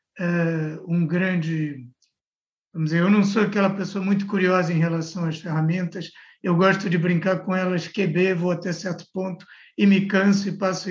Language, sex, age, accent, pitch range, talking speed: Portuguese, male, 60-79, Brazilian, 170-200 Hz, 175 wpm